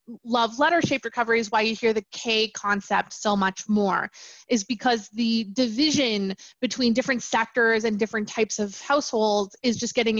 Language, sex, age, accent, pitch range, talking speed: English, female, 20-39, American, 210-250 Hz, 165 wpm